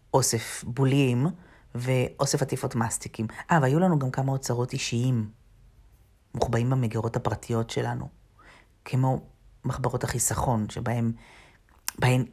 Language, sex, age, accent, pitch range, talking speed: Hebrew, female, 40-59, native, 115-160 Hz, 95 wpm